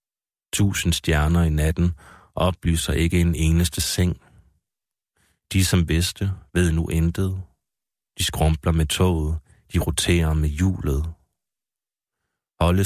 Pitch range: 80-90 Hz